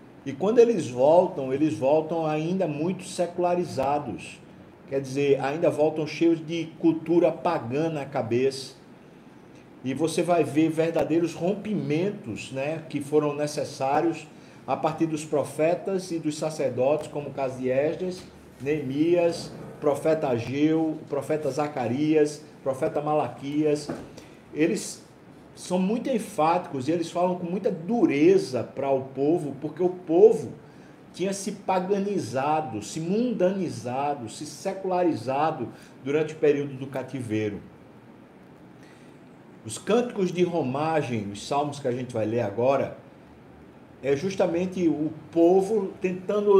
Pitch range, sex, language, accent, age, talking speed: 145-180 Hz, male, Portuguese, Brazilian, 50-69, 120 wpm